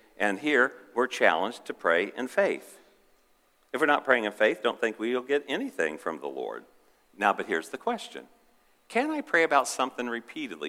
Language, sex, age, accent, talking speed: English, male, 50-69, American, 185 wpm